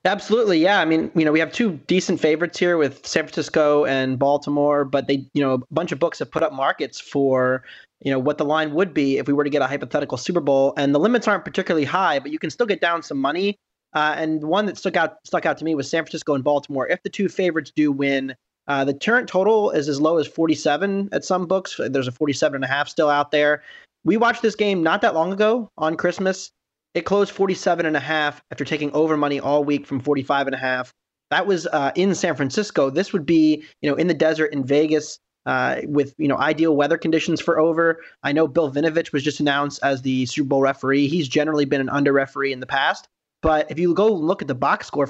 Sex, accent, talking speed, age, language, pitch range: male, American, 245 wpm, 30-49, English, 140-175 Hz